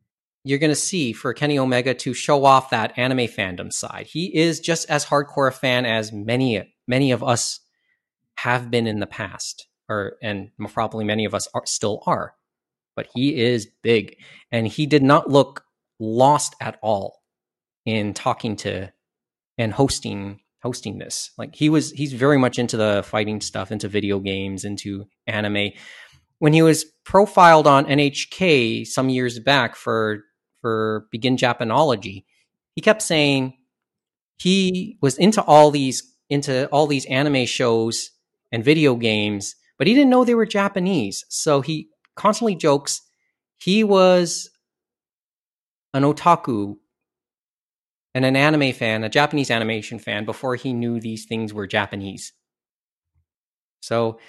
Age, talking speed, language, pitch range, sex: 30-49, 145 wpm, English, 110-145 Hz, male